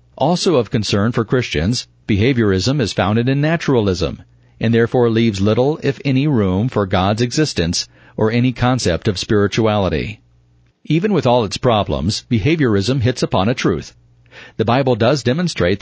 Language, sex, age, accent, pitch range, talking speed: English, male, 50-69, American, 100-125 Hz, 150 wpm